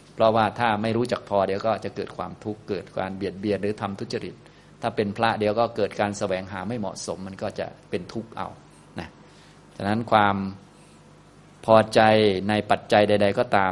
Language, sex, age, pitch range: Thai, male, 20-39, 95-110 Hz